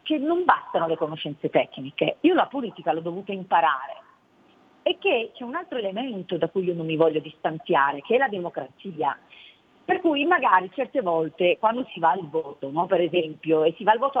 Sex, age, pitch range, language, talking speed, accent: female, 40-59, 170-260 Hz, Italian, 200 wpm, native